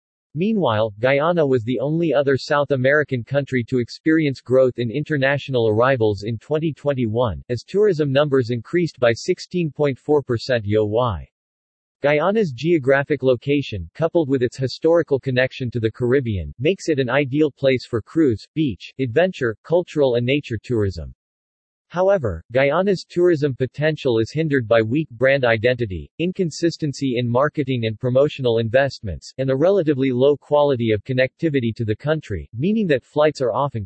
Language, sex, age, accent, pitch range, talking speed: English, male, 40-59, American, 115-150 Hz, 140 wpm